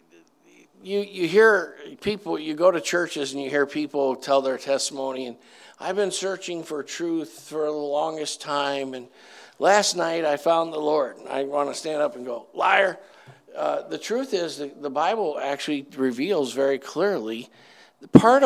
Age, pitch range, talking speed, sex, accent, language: 50-69, 135-165 Hz, 175 wpm, male, American, English